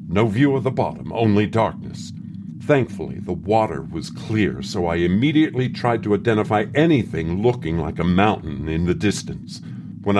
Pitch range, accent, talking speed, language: 100-130 Hz, American, 160 wpm, English